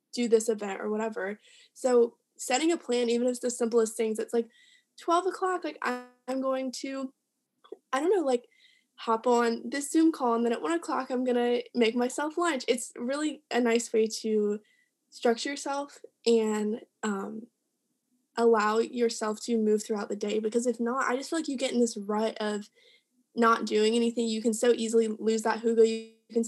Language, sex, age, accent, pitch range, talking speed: English, female, 10-29, American, 215-250 Hz, 190 wpm